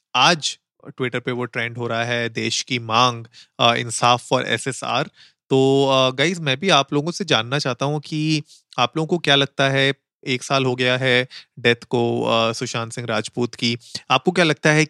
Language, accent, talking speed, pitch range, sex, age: Hindi, native, 185 wpm, 125-145 Hz, male, 30-49